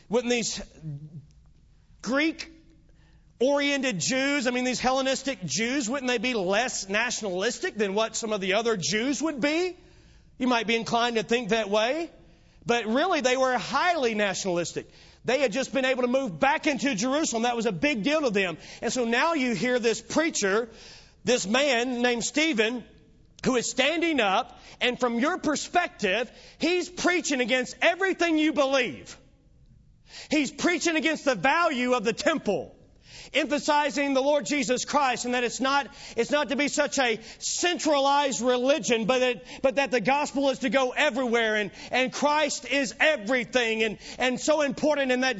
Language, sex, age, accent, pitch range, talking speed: English, male, 40-59, American, 235-290 Hz, 165 wpm